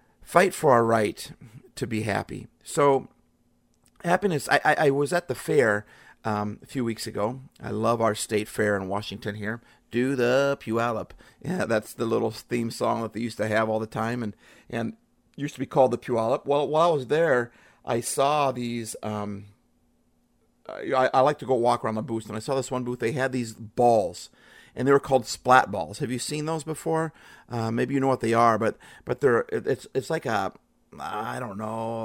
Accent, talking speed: American, 205 wpm